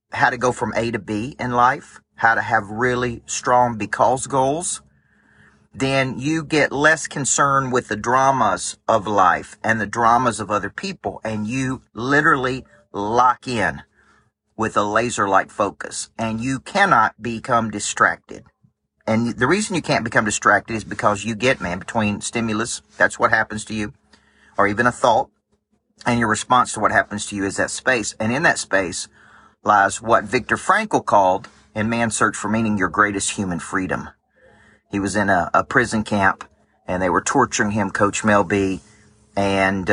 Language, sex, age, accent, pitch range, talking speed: English, male, 40-59, American, 105-125 Hz, 170 wpm